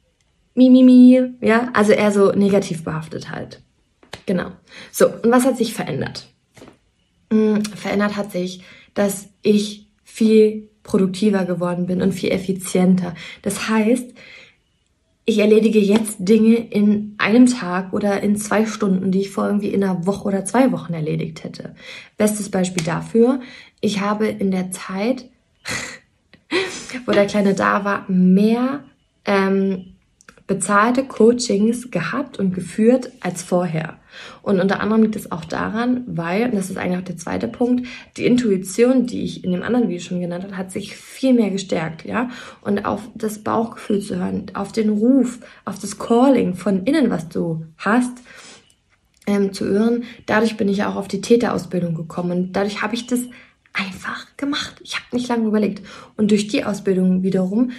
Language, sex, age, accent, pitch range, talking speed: German, female, 20-39, German, 190-235 Hz, 160 wpm